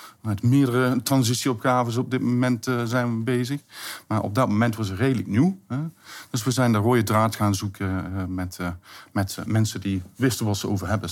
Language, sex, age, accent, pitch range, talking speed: Dutch, male, 50-69, Dutch, 100-120 Hz, 210 wpm